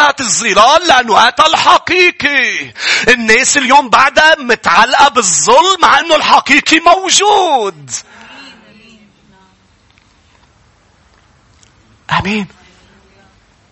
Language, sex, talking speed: English, male, 55 wpm